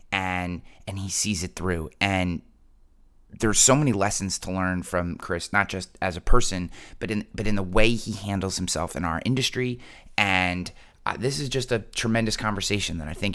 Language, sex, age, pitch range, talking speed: English, male, 30-49, 90-105 Hz, 195 wpm